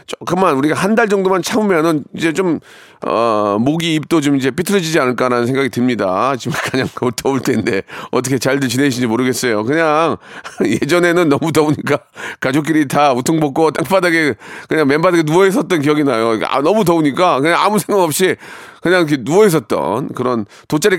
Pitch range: 125-170 Hz